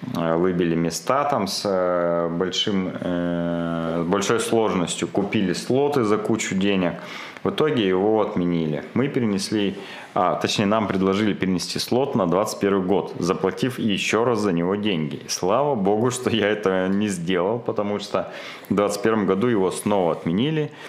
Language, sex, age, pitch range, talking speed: Russian, male, 30-49, 85-100 Hz, 140 wpm